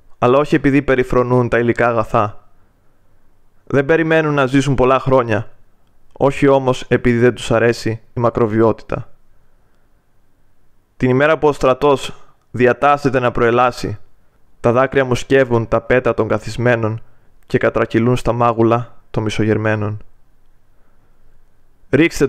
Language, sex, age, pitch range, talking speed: Greek, male, 20-39, 110-140 Hz, 120 wpm